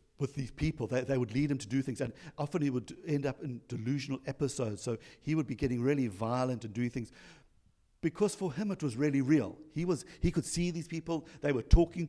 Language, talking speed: English, 235 wpm